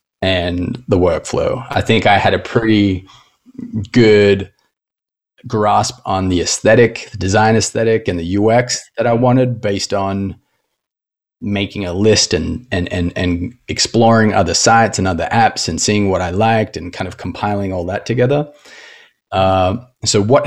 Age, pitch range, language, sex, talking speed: 30-49, 90-110 Hz, English, male, 155 wpm